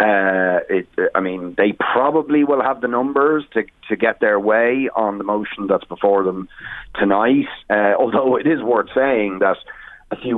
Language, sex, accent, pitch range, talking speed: English, male, Irish, 100-135 Hz, 180 wpm